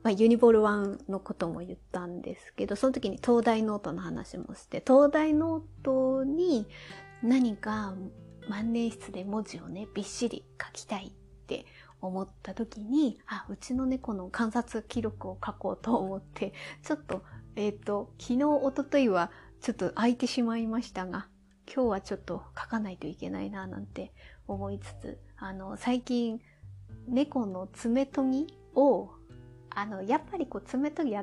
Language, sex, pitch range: Japanese, female, 195-275 Hz